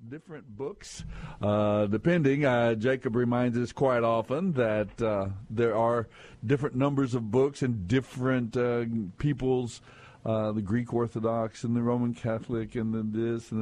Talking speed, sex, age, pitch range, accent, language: 150 wpm, male, 60-79, 115-145 Hz, American, English